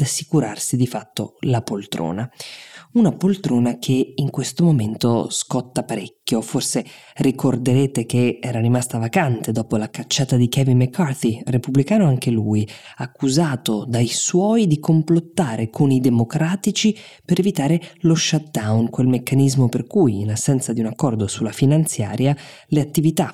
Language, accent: Italian, native